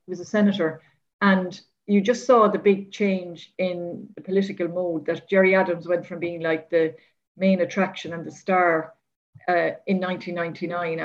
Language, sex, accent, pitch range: English, female, Irish, 165-190 Hz